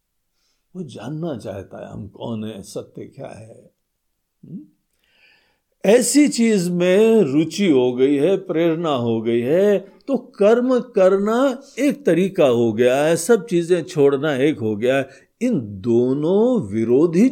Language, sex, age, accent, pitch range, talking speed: Hindi, male, 50-69, native, 135-215 Hz, 130 wpm